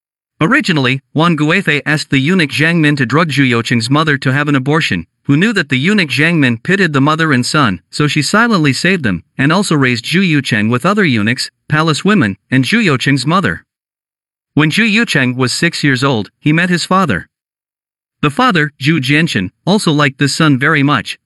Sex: male